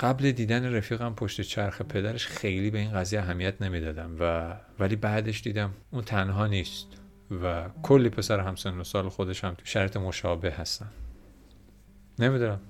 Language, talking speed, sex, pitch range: Persian, 150 wpm, male, 90-105 Hz